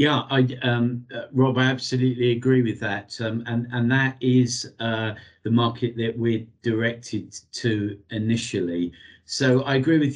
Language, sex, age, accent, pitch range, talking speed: English, male, 50-69, British, 95-120 Hz, 160 wpm